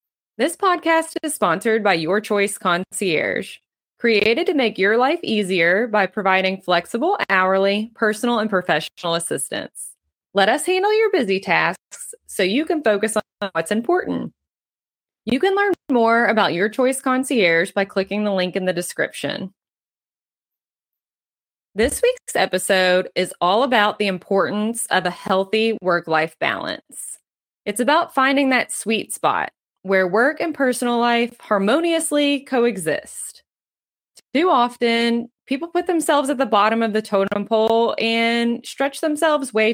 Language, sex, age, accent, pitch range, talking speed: English, female, 20-39, American, 195-260 Hz, 140 wpm